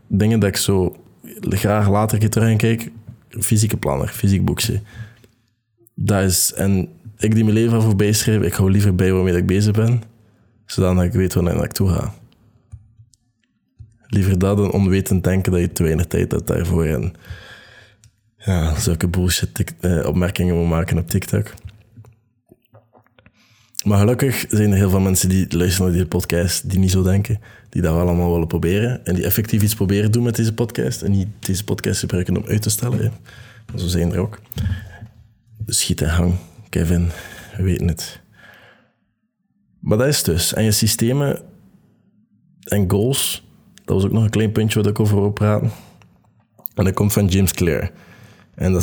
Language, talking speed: Dutch, 175 wpm